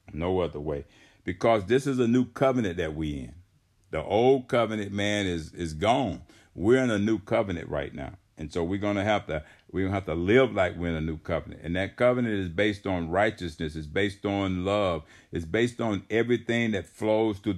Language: English